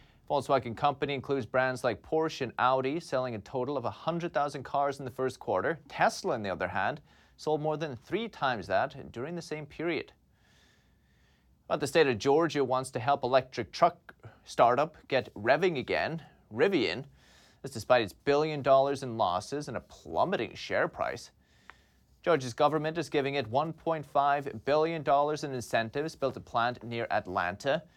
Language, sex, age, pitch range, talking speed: English, male, 30-49, 125-160 Hz, 155 wpm